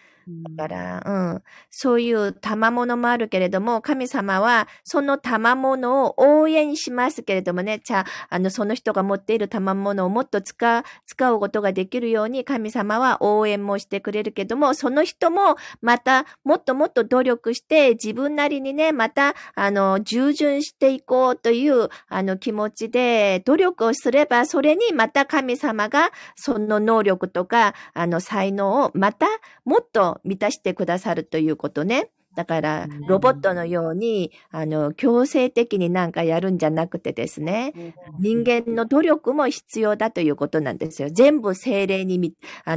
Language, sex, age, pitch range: Japanese, female, 40-59, 190-260 Hz